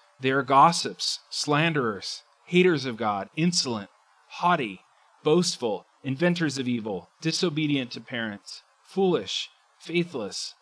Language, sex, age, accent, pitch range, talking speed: English, male, 30-49, American, 135-180 Hz, 100 wpm